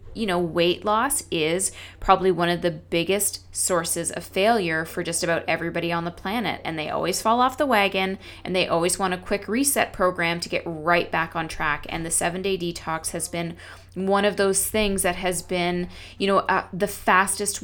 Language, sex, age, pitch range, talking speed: English, female, 20-39, 165-190 Hz, 205 wpm